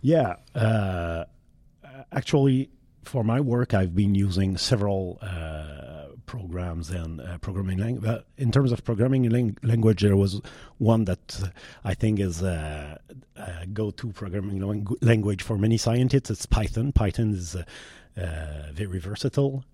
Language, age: English, 30-49